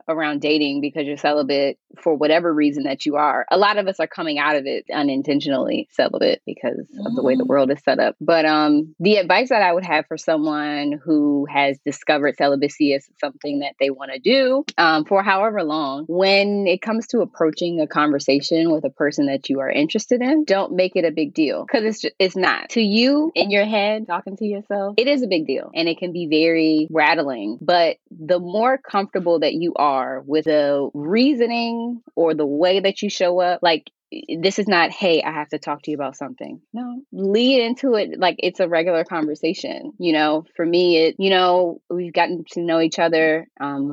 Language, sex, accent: English, female, American